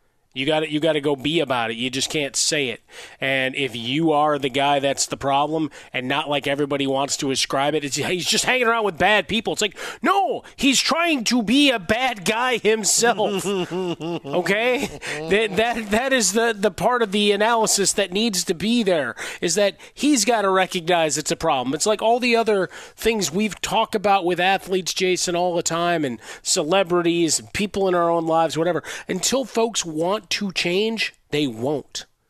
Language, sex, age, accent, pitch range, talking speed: English, male, 30-49, American, 150-200 Hz, 195 wpm